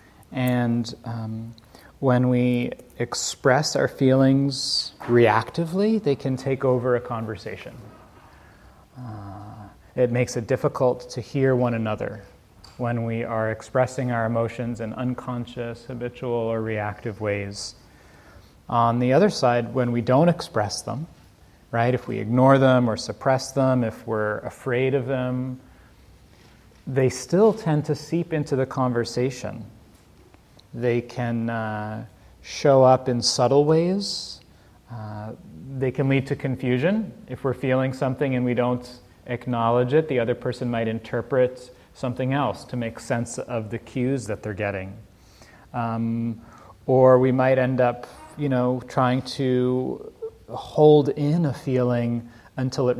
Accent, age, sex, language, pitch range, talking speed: American, 30-49, male, English, 115-130 Hz, 135 wpm